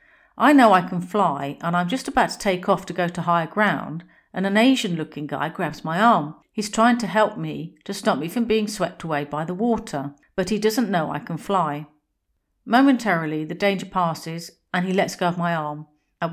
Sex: female